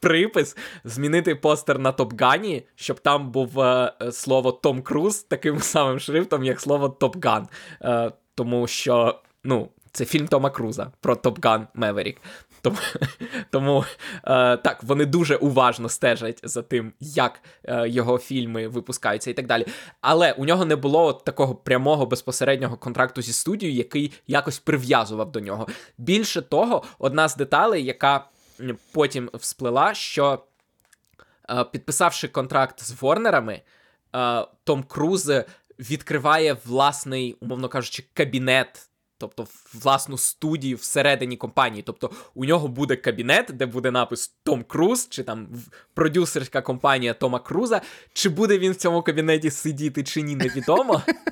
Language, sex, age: Ukrainian, male, 20-39